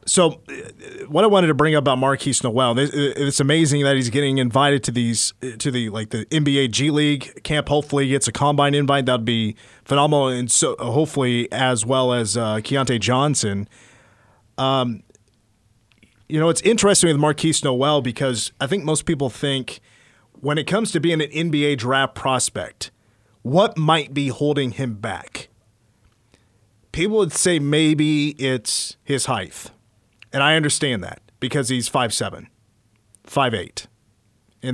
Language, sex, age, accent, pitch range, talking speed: English, male, 30-49, American, 115-145 Hz, 150 wpm